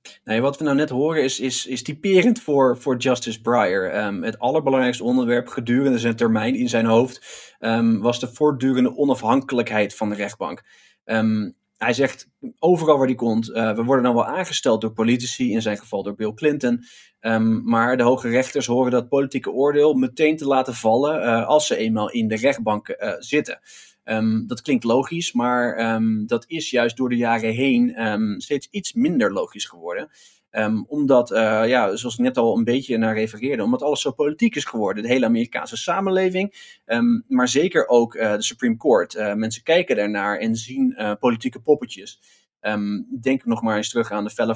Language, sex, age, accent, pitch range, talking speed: Dutch, male, 20-39, Dutch, 115-140 Hz, 185 wpm